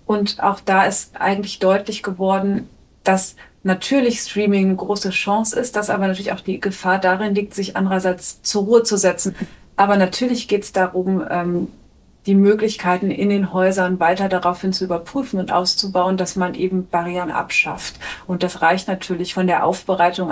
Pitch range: 180-200 Hz